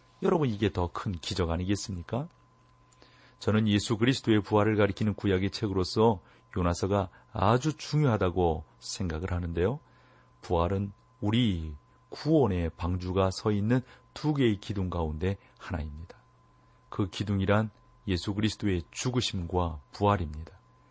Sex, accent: male, native